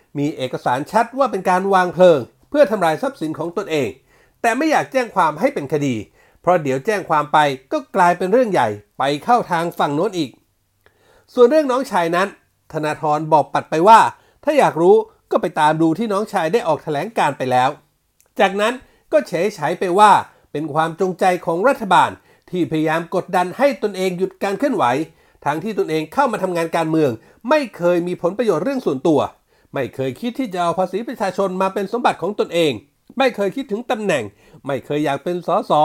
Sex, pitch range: male, 160-240 Hz